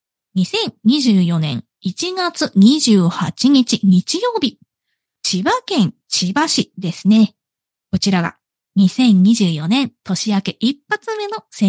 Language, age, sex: Japanese, 20-39, female